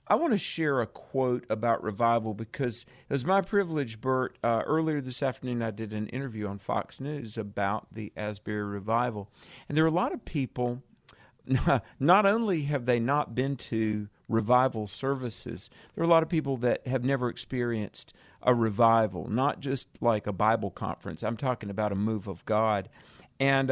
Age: 50-69